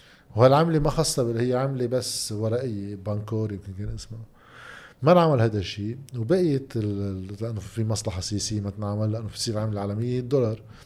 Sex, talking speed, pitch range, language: male, 160 wpm, 105-125 Hz, Arabic